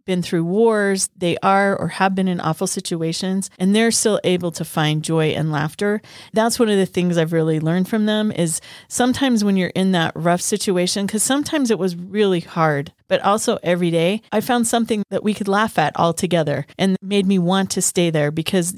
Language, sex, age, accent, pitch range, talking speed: English, female, 30-49, American, 165-200 Hz, 210 wpm